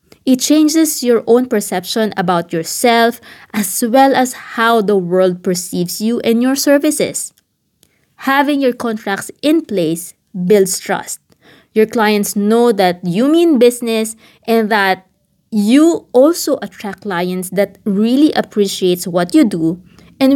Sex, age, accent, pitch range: female, 20-39, Filipino, 195-255 Hz